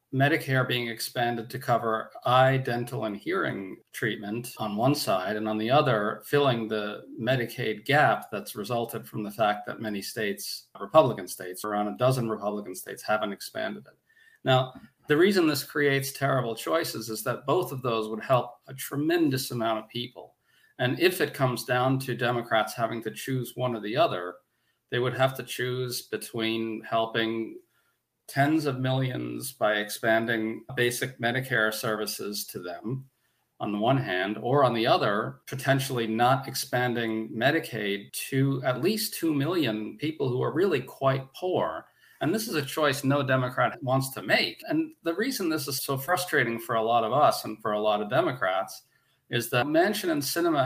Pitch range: 115-135 Hz